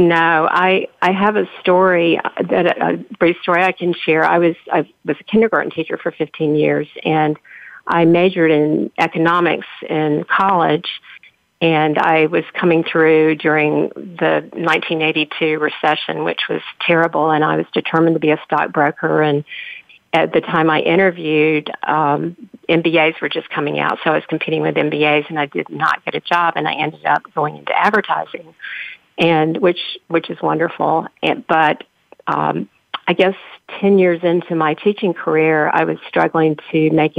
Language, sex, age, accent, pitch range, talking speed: English, female, 50-69, American, 155-175 Hz, 165 wpm